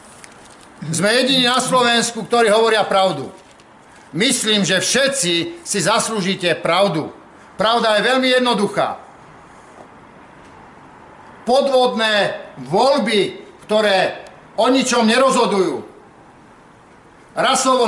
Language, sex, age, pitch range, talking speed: Czech, male, 50-69, 195-240 Hz, 80 wpm